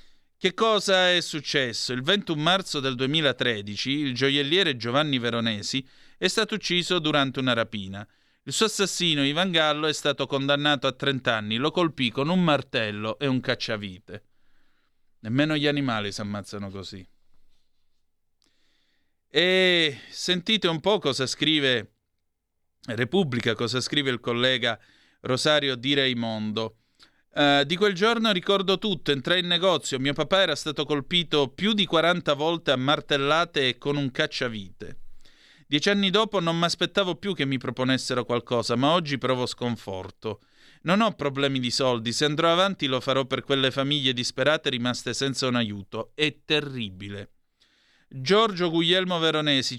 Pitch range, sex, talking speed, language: 120-160 Hz, male, 145 wpm, Italian